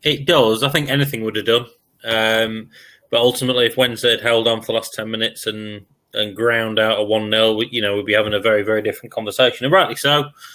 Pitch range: 110-130 Hz